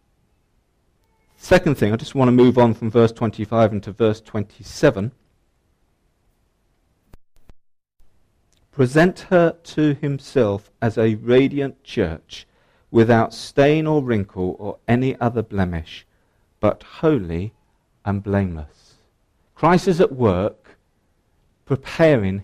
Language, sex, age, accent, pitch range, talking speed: English, male, 50-69, British, 95-130 Hz, 105 wpm